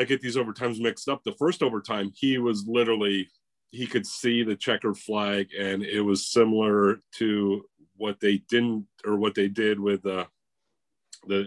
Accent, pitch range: American, 95-115 Hz